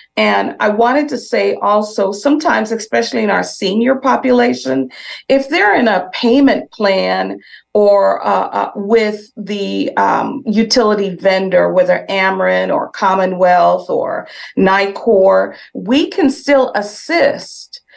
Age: 40-59